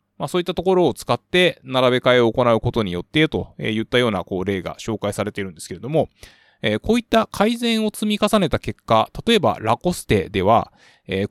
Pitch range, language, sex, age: 105-155 Hz, Japanese, male, 20-39